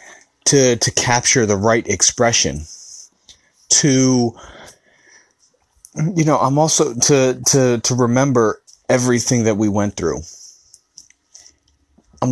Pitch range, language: 105-125 Hz, English